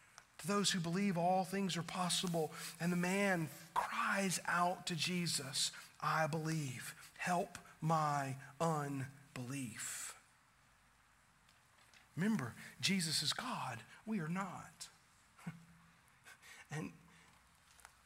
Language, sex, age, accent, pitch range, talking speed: English, male, 50-69, American, 155-205 Hz, 90 wpm